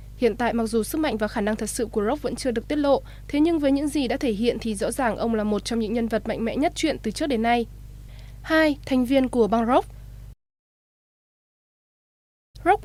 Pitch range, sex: 225-270 Hz, female